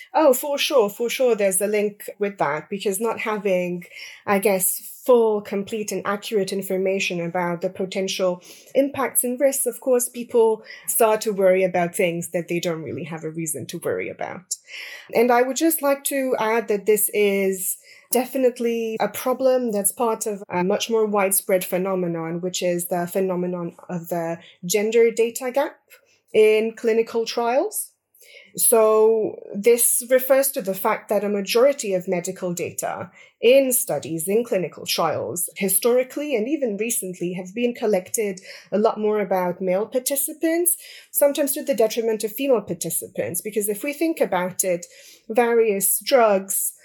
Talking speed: 155 wpm